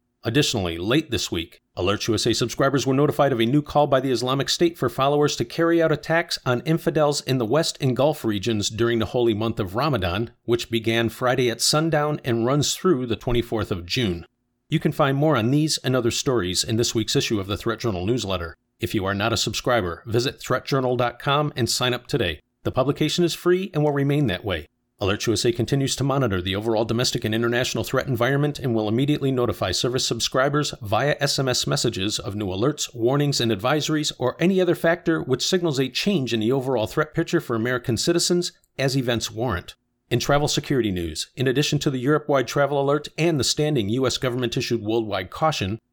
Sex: male